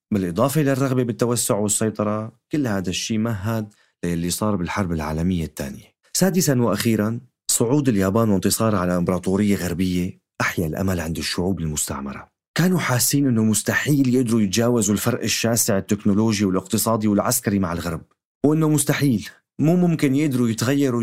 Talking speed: 130 wpm